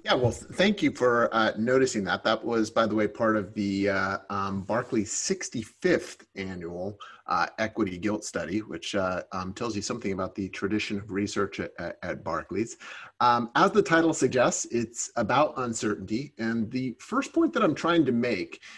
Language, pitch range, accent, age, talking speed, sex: English, 105-130 Hz, American, 30-49, 180 wpm, male